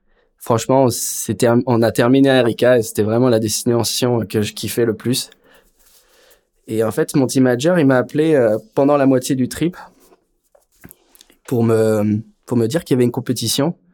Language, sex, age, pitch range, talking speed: French, male, 20-39, 110-130 Hz, 175 wpm